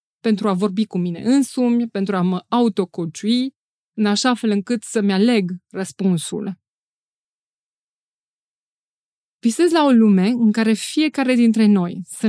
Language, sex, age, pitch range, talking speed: Romanian, female, 20-39, 195-245 Hz, 130 wpm